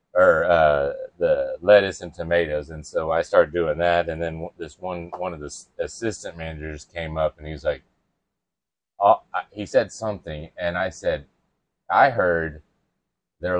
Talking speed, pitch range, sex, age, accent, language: 160 wpm, 80-115 Hz, male, 30-49, American, English